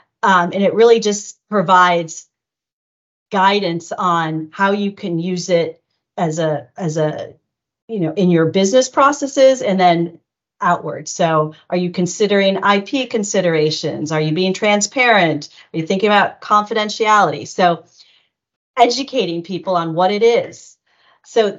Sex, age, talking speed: female, 40-59, 135 wpm